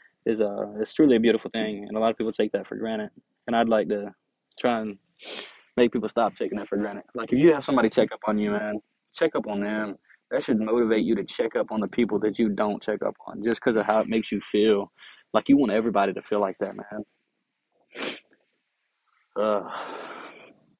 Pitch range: 105-115 Hz